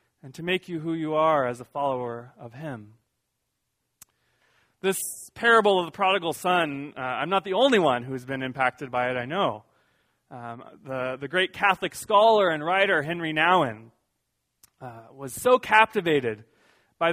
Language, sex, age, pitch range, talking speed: English, male, 30-49, 125-175 Hz, 165 wpm